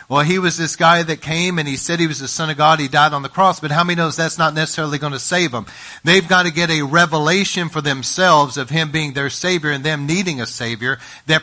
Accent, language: American, English